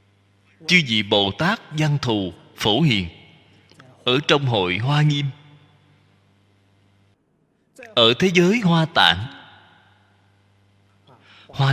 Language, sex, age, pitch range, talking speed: Vietnamese, male, 20-39, 100-155 Hz, 95 wpm